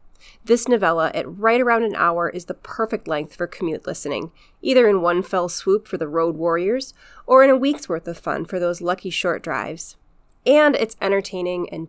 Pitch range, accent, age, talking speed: 170-205 Hz, American, 30-49, 195 wpm